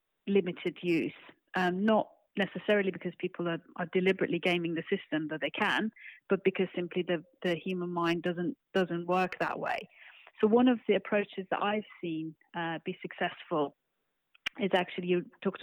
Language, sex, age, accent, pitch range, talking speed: English, female, 40-59, British, 175-200 Hz, 165 wpm